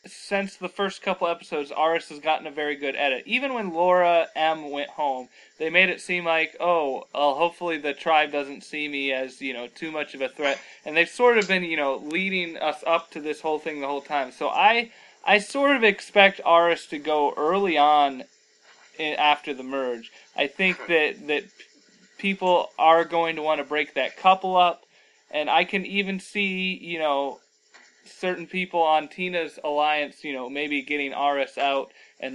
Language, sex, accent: English, male, American